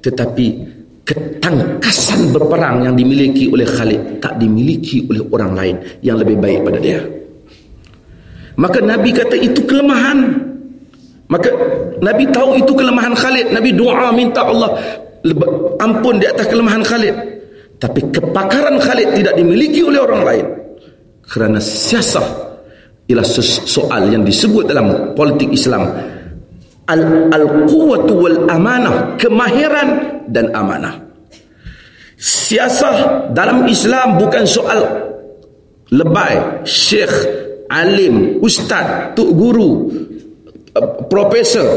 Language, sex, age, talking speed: Malay, male, 40-59, 105 wpm